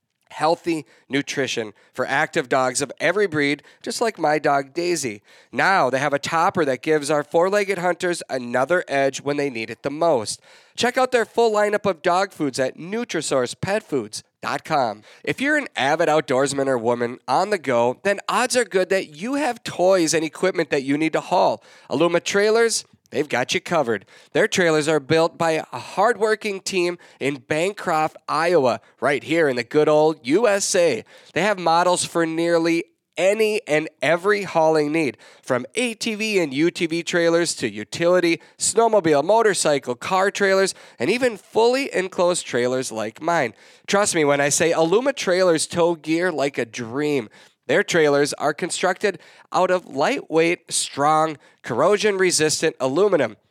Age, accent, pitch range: 30-49, American, 150-200 Hz